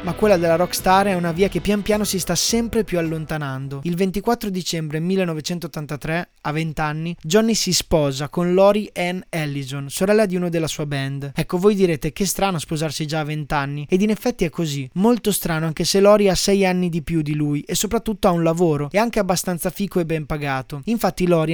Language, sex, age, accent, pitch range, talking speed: Italian, male, 20-39, native, 155-195 Hz, 210 wpm